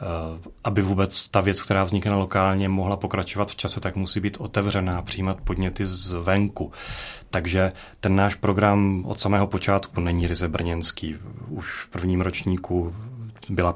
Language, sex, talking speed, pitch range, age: Czech, male, 145 wpm, 95-105 Hz, 30-49